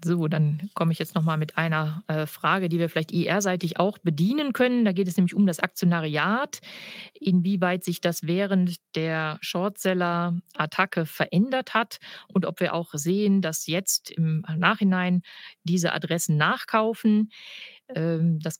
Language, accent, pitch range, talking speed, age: German, German, 165-195 Hz, 150 wpm, 50-69